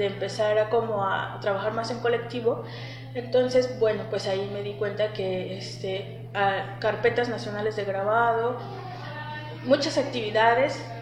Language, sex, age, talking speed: Spanish, female, 20-39, 135 wpm